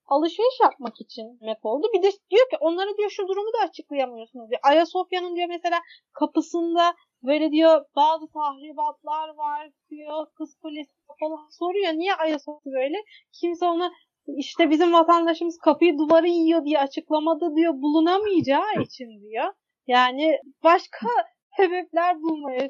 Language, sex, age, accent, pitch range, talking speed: Turkish, female, 30-49, native, 290-345 Hz, 130 wpm